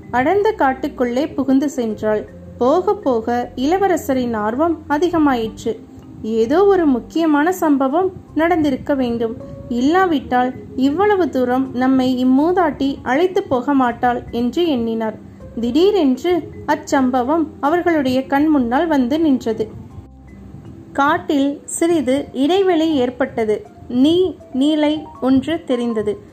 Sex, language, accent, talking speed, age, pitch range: female, Tamil, native, 85 wpm, 30-49, 250-320 Hz